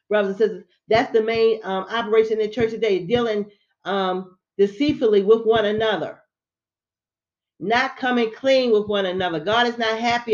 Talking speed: 165 wpm